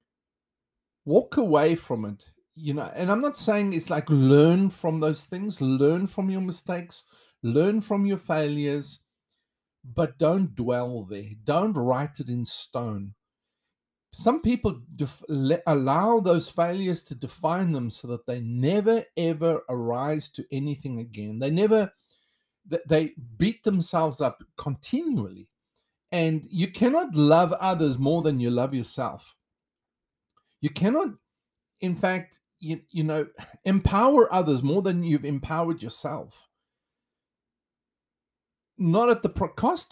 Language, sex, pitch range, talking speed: English, male, 135-195 Hz, 130 wpm